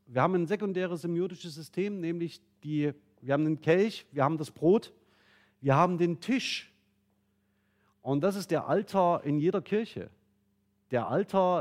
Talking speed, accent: 150 wpm, German